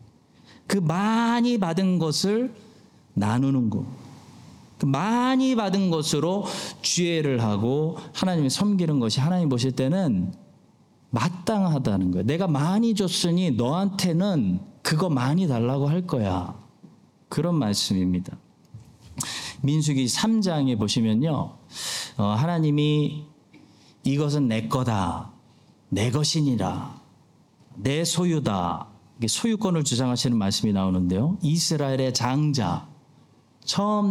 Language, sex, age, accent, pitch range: Korean, male, 40-59, native, 120-175 Hz